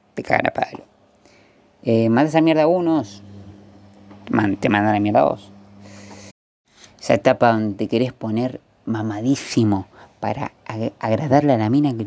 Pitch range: 100-120 Hz